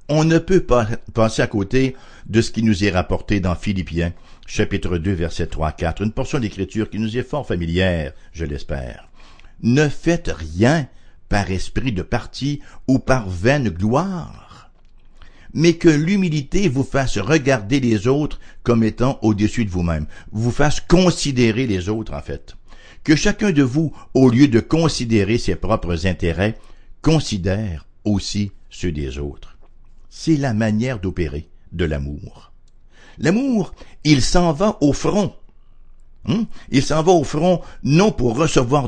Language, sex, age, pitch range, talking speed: English, male, 60-79, 90-140 Hz, 150 wpm